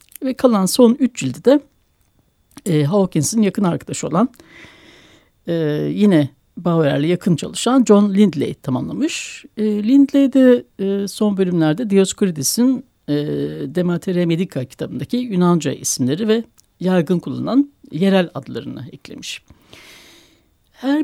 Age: 60-79